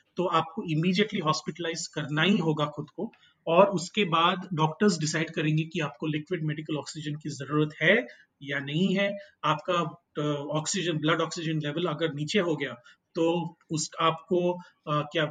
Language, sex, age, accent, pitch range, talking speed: Hindi, male, 30-49, native, 155-195 Hz, 155 wpm